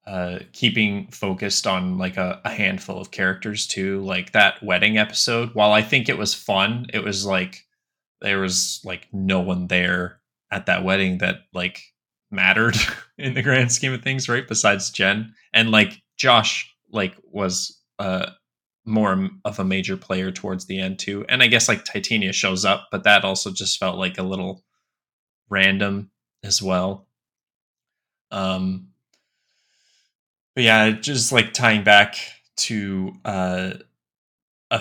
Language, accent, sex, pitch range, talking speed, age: English, American, male, 95-110 Hz, 150 wpm, 20-39